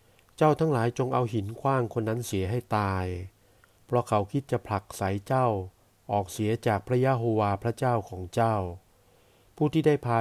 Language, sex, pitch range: Thai, male, 100-120 Hz